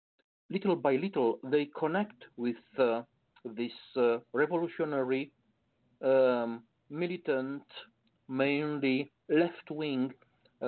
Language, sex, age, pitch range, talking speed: English, male, 50-69, 125-170 Hz, 80 wpm